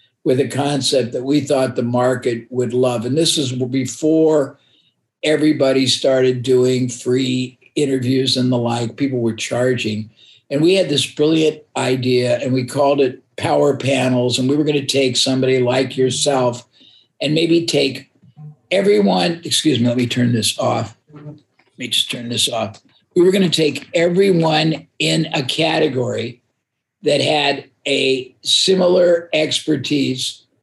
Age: 50-69